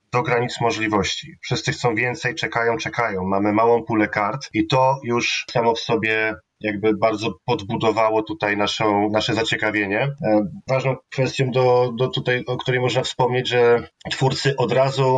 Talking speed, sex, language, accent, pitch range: 140 wpm, male, Polish, native, 110-130 Hz